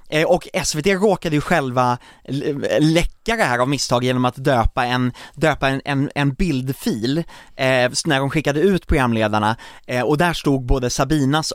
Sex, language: male, English